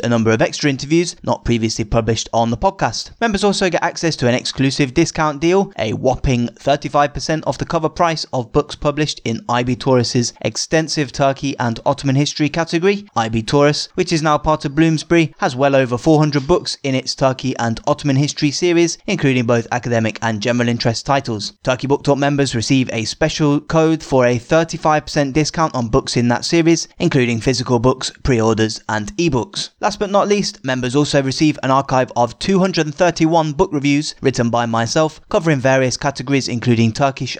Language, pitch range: English, 120-160 Hz